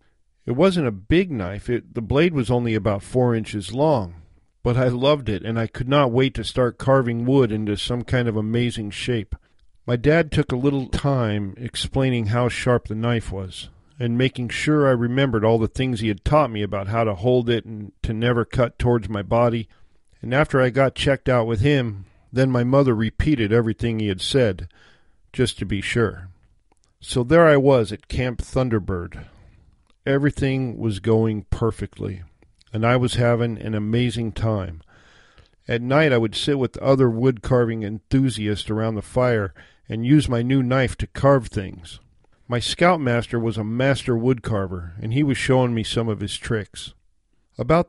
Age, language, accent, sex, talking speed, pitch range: 50-69, English, American, male, 180 wpm, 105-130 Hz